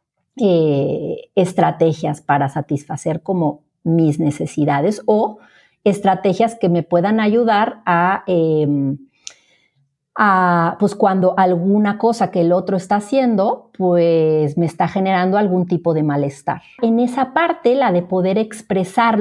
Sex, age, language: female, 40-59, Spanish